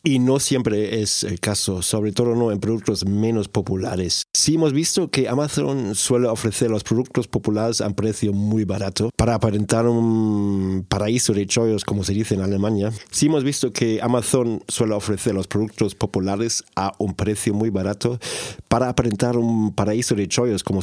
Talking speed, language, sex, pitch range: 175 wpm, Spanish, male, 105-125 Hz